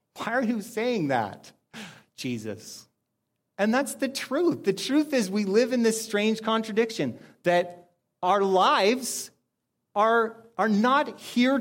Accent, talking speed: American, 135 wpm